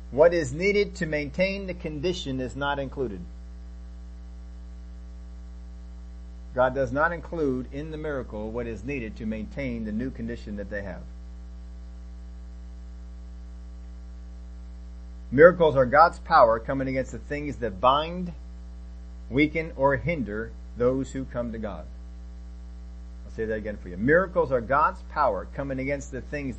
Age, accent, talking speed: 40-59, American, 135 wpm